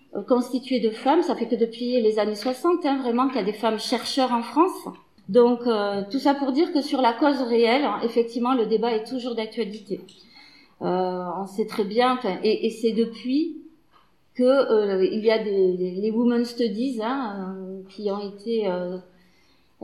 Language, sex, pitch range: French, female, 225-285 Hz